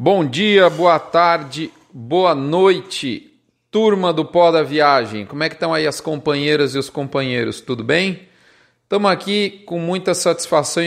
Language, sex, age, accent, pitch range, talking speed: Portuguese, male, 40-59, Brazilian, 140-175 Hz, 155 wpm